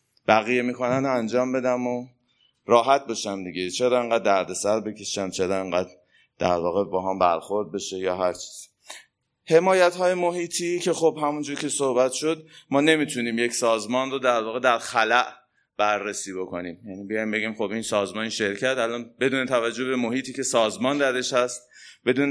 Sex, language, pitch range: male, Persian, 105-130 Hz